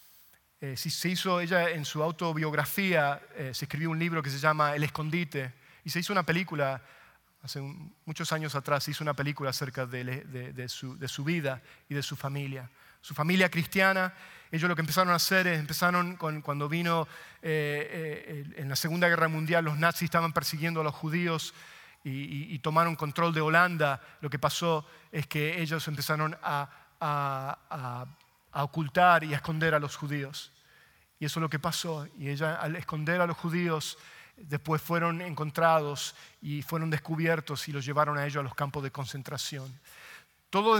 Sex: male